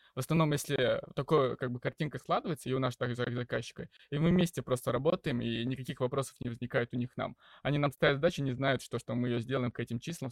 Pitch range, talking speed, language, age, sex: 120-135 Hz, 235 wpm, Russian, 20-39, male